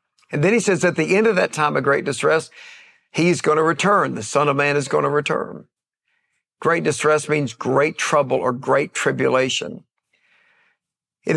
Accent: American